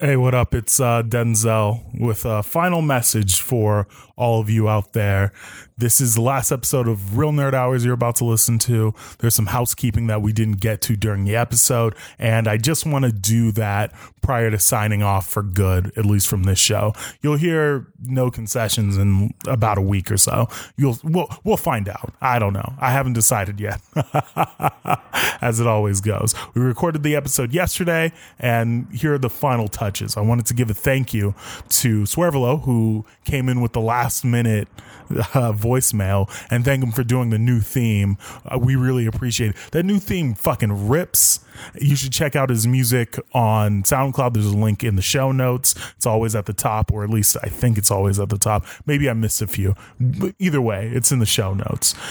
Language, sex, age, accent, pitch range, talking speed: English, male, 20-39, American, 105-130 Hz, 200 wpm